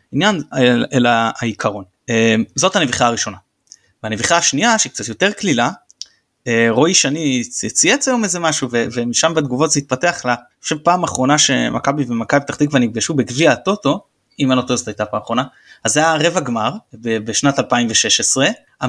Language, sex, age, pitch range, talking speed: Hebrew, male, 20-39, 120-180 Hz, 155 wpm